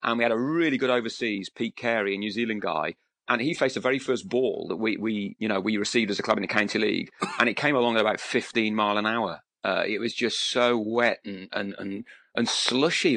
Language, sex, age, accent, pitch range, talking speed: English, male, 30-49, British, 100-120 Hz, 250 wpm